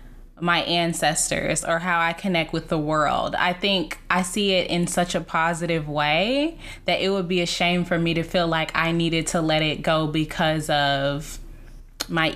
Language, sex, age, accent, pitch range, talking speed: English, female, 10-29, American, 160-190 Hz, 190 wpm